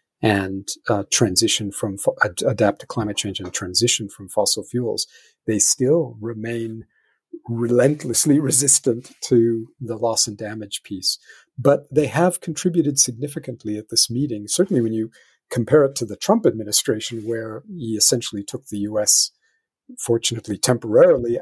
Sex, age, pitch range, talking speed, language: male, 50-69, 110-130 Hz, 140 wpm, English